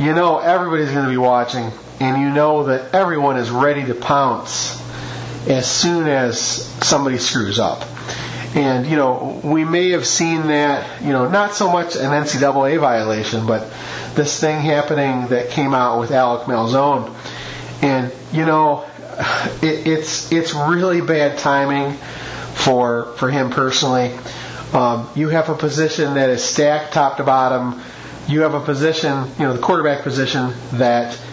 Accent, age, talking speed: American, 40-59, 155 wpm